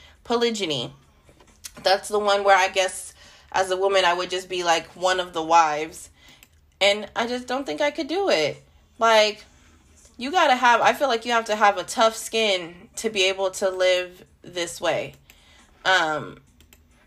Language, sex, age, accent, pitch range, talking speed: English, female, 20-39, American, 170-235 Hz, 180 wpm